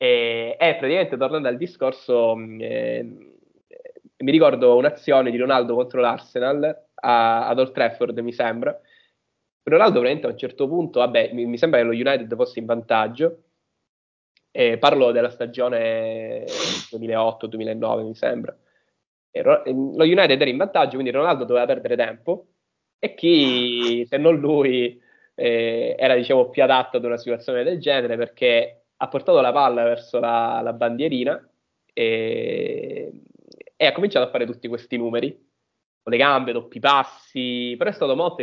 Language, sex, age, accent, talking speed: Italian, male, 20-39, native, 150 wpm